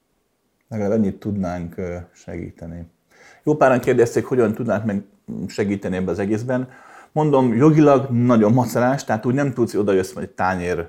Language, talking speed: Hungarian, 150 wpm